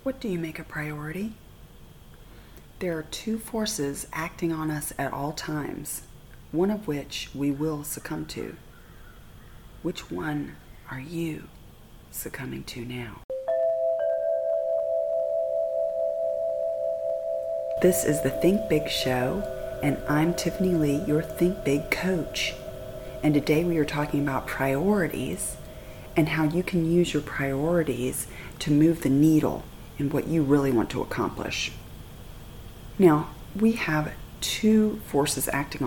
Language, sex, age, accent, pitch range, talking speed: English, female, 30-49, American, 130-165 Hz, 125 wpm